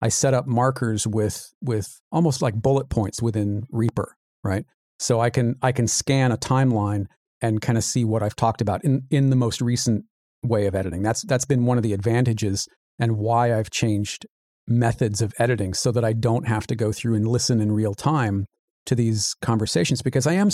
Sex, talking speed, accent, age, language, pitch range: male, 205 wpm, American, 40-59, English, 110-130 Hz